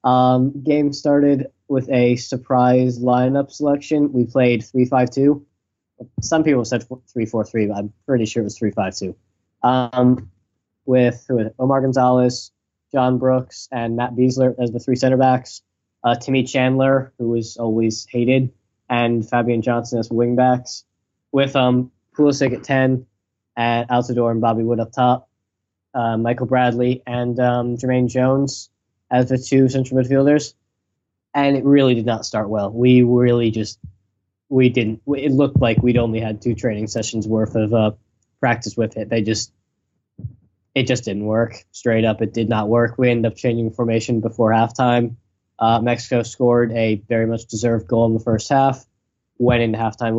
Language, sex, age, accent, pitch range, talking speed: English, male, 10-29, American, 110-130 Hz, 170 wpm